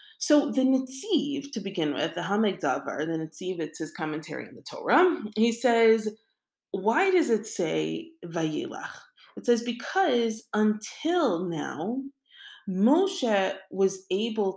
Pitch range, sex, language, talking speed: 180-255 Hz, female, English, 130 wpm